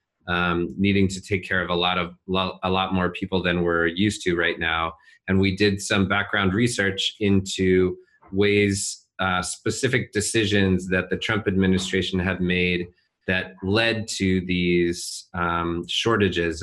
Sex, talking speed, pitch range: male, 155 wpm, 90-100 Hz